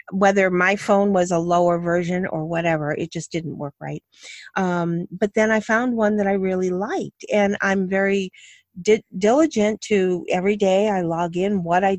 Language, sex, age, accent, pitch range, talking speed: English, female, 40-59, American, 170-215 Hz, 180 wpm